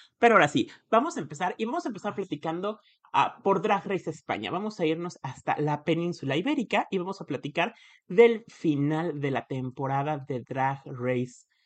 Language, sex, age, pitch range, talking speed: Spanish, male, 30-49, 125-170 Hz, 180 wpm